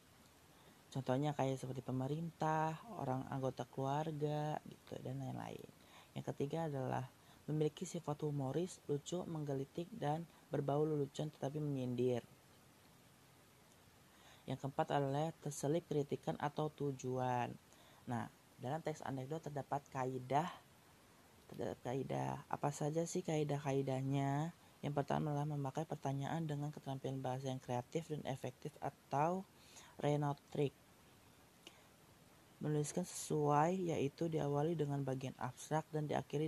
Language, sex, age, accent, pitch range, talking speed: Indonesian, female, 30-49, native, 135-155 Hz, 110 wpm